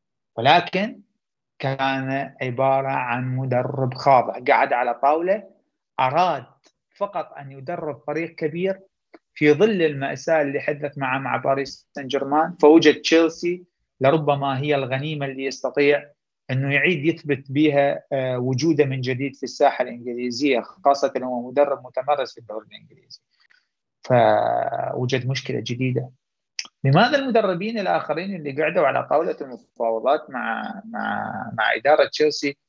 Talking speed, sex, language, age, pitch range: 120 wpm, male, Arabic, 30-49, 130-155 Hz